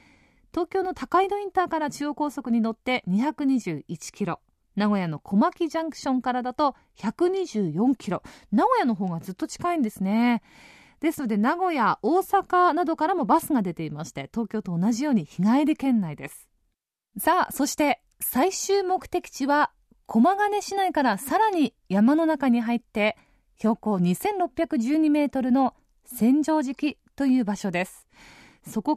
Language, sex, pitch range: Japanese, female, 215-330 Hz